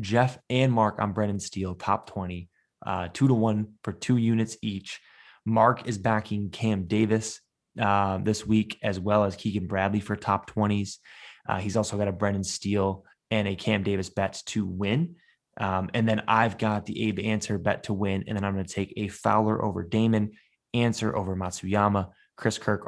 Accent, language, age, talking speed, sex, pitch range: American, English, 20-39, 185 wpm, male, 95-110 Hz